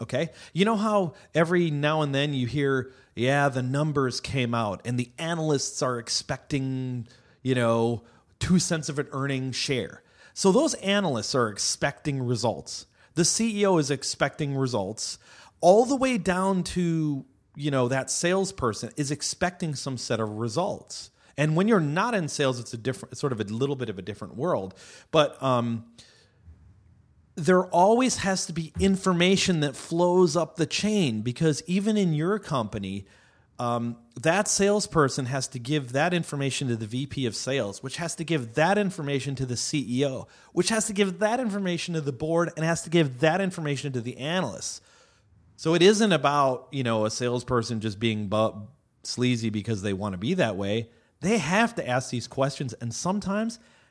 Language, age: English, 30-49